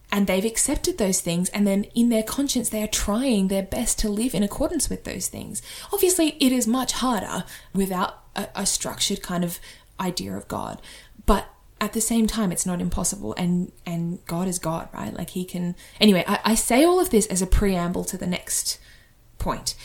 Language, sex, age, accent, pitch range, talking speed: English, female, 10-29, Australian, 175-210 Hz, 205 wpm